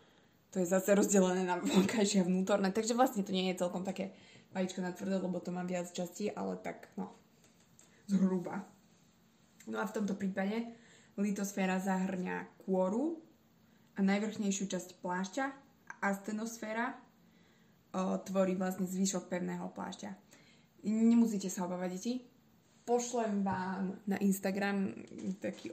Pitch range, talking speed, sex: 185-210 Hz, 130 wpm, female